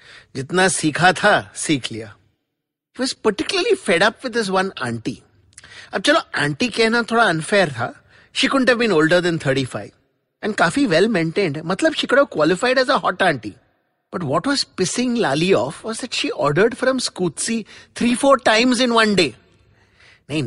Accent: Indian